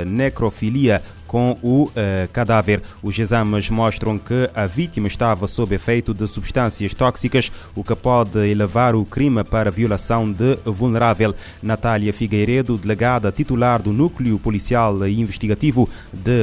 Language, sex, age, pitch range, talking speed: Portuguese, male, 30-49, 100-120 Hz, 130 wpm